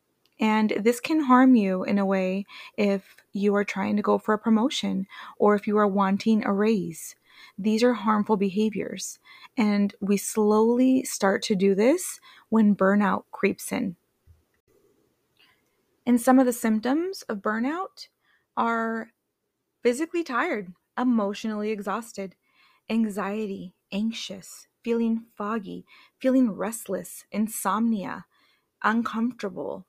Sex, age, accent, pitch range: female, 20-39, American, 195-235 Hz